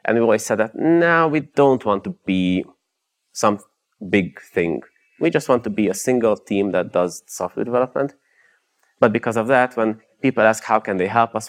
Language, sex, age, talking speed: English, male, 30-49, 200 wpm